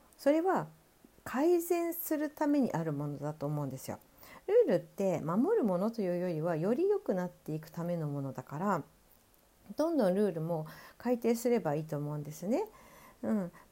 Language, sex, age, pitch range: Japanese, female, 50-69, 175-275 Hz